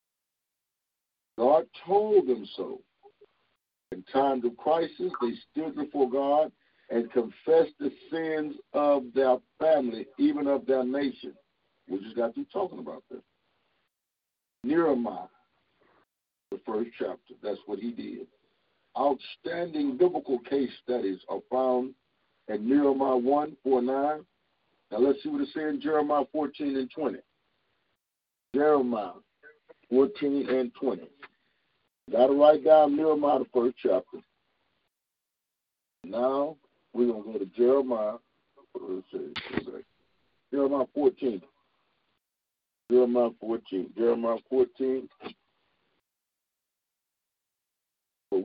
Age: 60-79